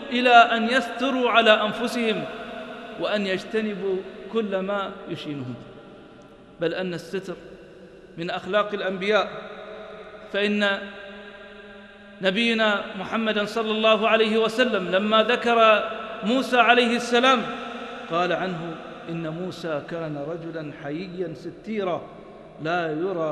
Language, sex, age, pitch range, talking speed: English, male, 50-69, 175-245 Hz, 100 wpm